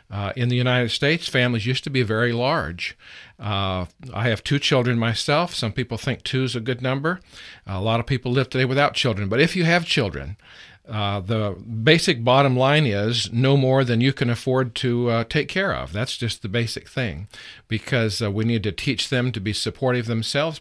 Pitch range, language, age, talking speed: 110-135 Hz, English, 50-69, 210 wpm